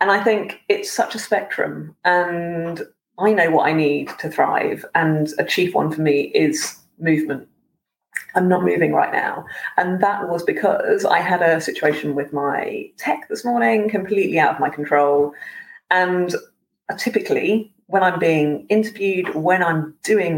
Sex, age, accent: female, 30-49, British